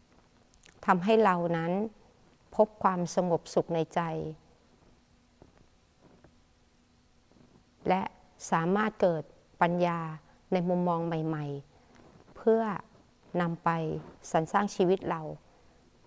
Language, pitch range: Thai, 165-205 Hz